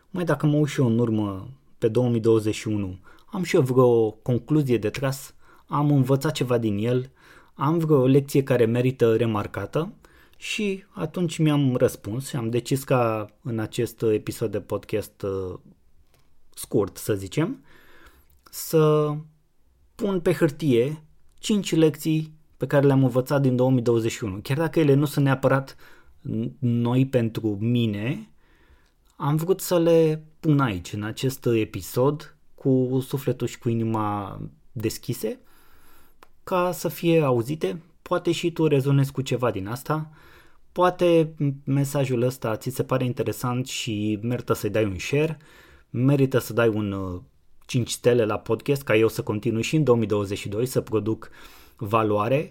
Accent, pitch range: native, 110-150 Hz